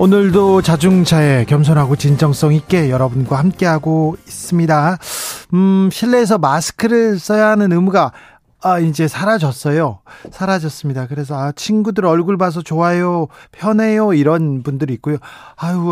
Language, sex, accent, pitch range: Korean, male, native, 150-185 Hz